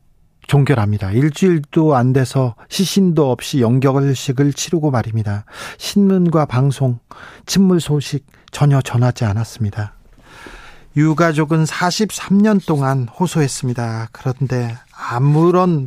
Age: 40-59